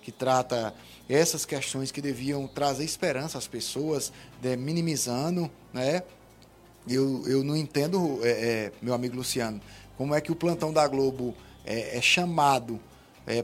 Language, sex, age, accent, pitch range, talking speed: Portuguese, male, 20-39, Brazilian, 140-190 Hz, 145 wpm